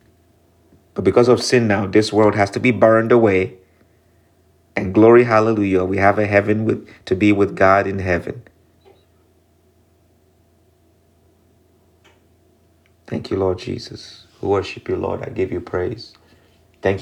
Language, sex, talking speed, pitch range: English, male, 135 wpm, 90-110 Hz